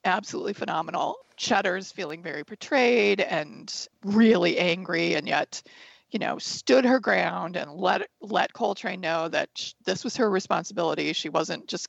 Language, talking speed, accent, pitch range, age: English, 145 wpm, American, 185-245 Hz, 40-59